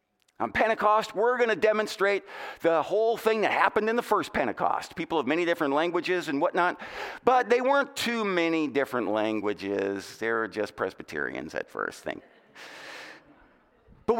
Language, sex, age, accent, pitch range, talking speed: English, male, 50-69, American, 185-280 Hz, 155 wpm